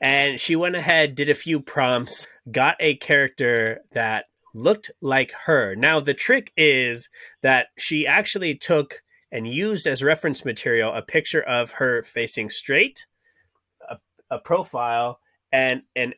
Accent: American